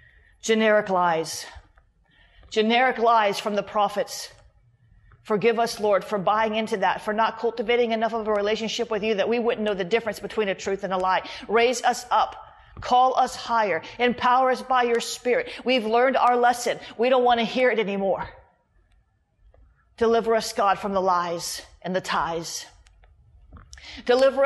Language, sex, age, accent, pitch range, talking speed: English, female, 40-59, American, 205-260 Hz, 165 wpm